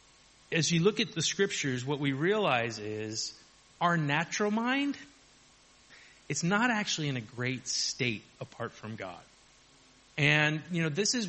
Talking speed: 150 wpm